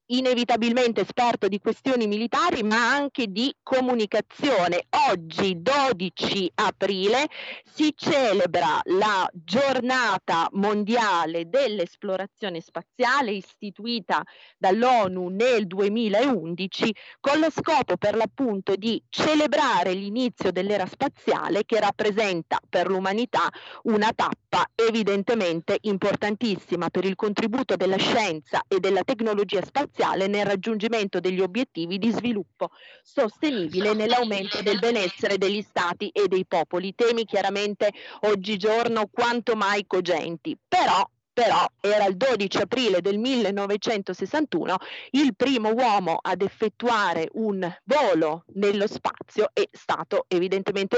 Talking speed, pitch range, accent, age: 105 wpm, 195-245 Hz, native, 40-59